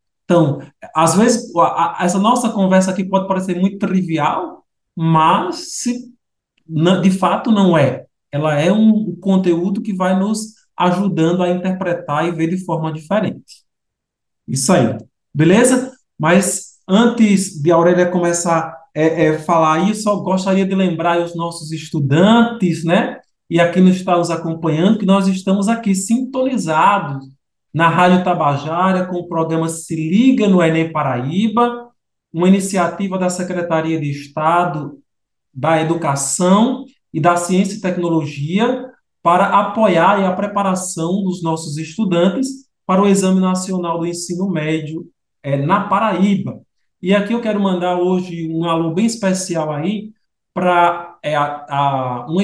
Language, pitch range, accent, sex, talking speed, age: Portuguese, 160-195 Hz, Brazilian, male, 135 wpm, 20-39